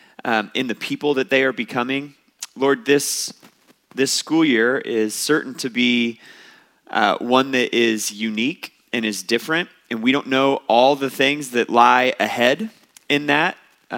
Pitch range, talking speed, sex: 125-150 Hz, 160 wpm, male